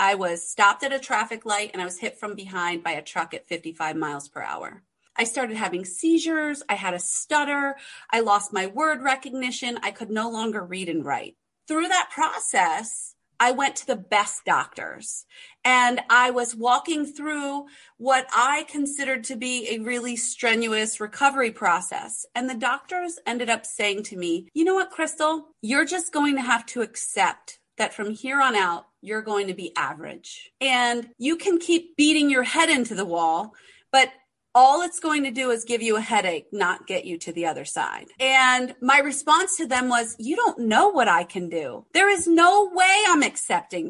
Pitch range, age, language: 215-295 Hz, 30-49, English